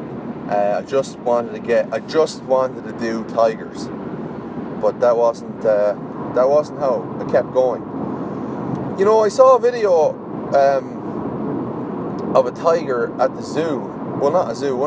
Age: 30-49